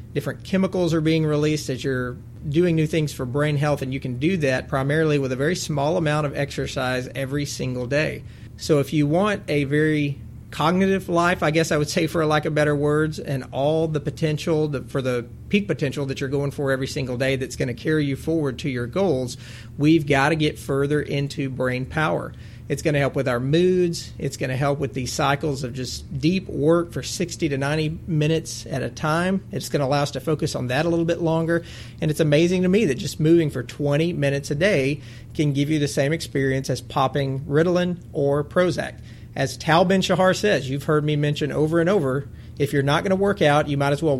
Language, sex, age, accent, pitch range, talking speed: English, male, 40-59, American, 135-160 Hz, 225 wpm